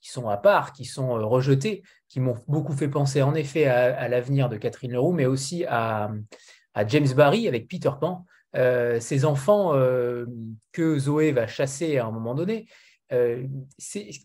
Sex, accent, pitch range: male, French, 125-170 Hz